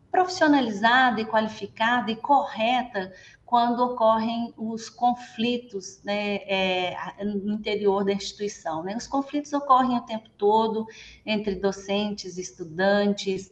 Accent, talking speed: Brazilian, 110 wpm